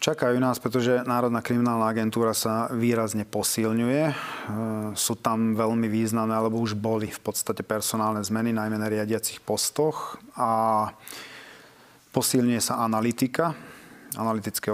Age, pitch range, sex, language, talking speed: 40-59, 110-115 Hz, male, Slovak, 120 wpm